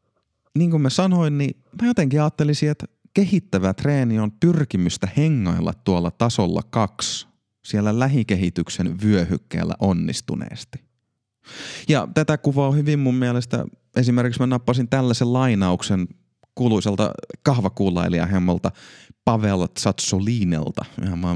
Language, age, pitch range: Finnish, 30-49, 95-125 Hz